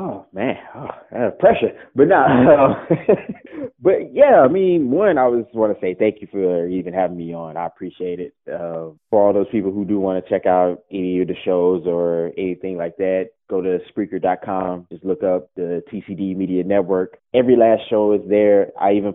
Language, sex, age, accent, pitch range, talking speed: English, male, 20-39, American, 95-130 Hz, 200 wpm